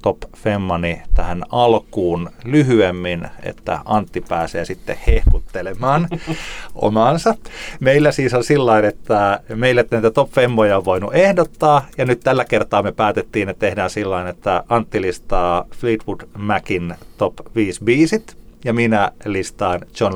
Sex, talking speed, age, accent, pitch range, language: male, 130 wpm, 30-49, native, 85-120 Hz, Finnish